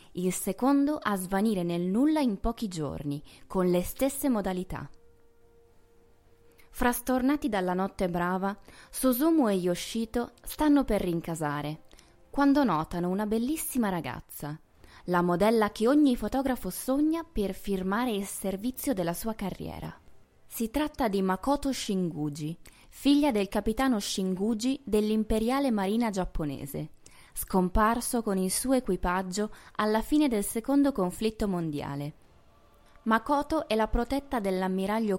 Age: 20-39